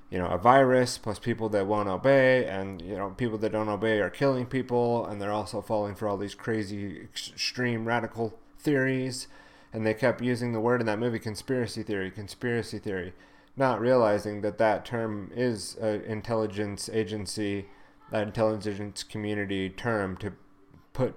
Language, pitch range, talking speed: English, 100-120 Hz, 165 wpm